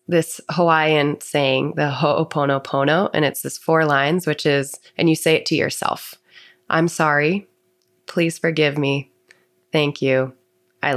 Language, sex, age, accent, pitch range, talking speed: English, female, 20-39, American, 140-175 Hz, 140 wpm